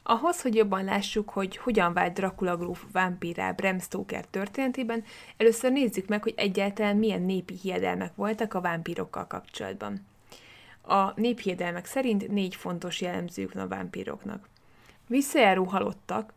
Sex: female